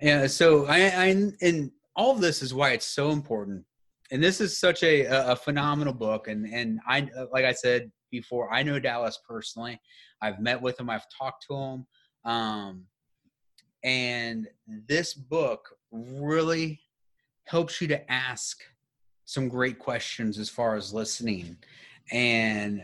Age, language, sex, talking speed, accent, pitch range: 30-49, English, male, 150 wpm, American, 115-150 Hz